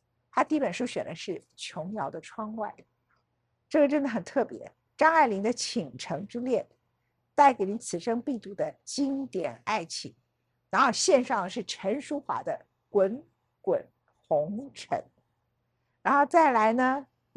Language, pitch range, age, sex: Chinese, 180-280 Hz, 50-69, female